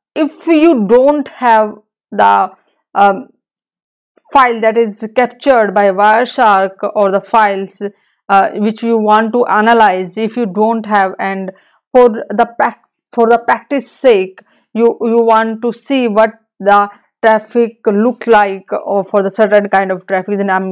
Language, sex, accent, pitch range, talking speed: English, female, Indian, 205-240 Hz, 150 wpm